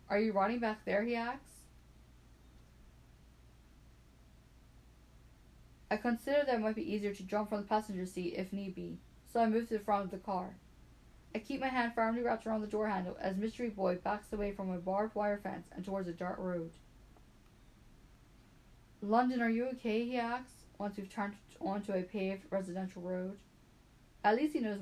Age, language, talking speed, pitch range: 10-29, English, 180 wpm, 170-215 Hz